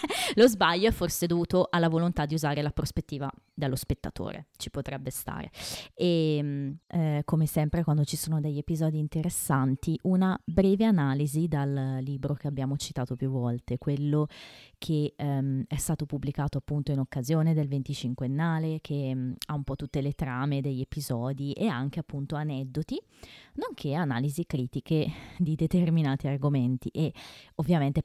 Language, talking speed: Italian, 150 wpm